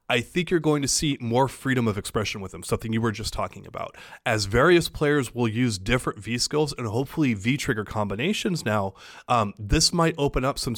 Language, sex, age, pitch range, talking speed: English, male, 30-49, 110-140 Hz, 200 wpm